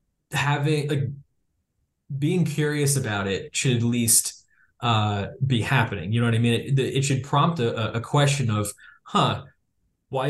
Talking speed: 155 wpm